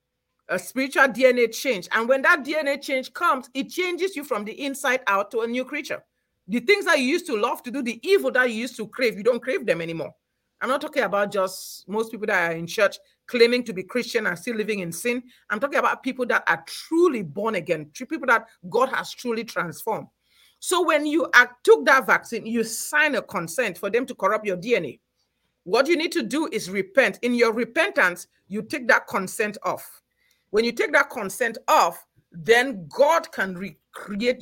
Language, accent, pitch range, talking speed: English, Nigerian, 195-275 Hz, 205 wpm